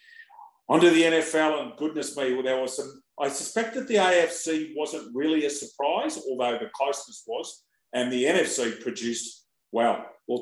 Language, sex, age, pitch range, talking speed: English, male, 40-59, 115-155 Hz, 160 wpm